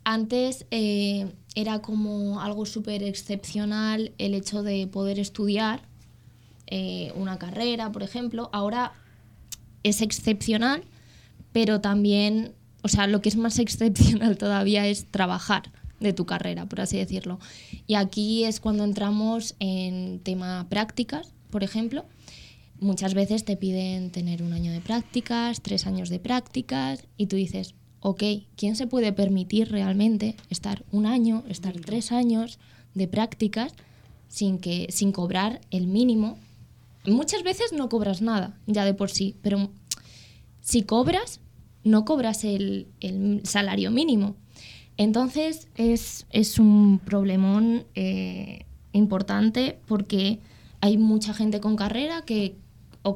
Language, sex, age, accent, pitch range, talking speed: Spanish, female, 20-39, Spanish, 190-220 Hz, 130 wpm